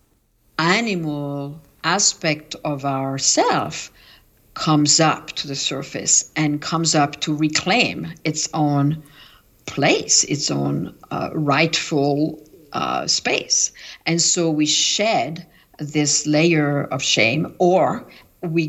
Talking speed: 105 wpm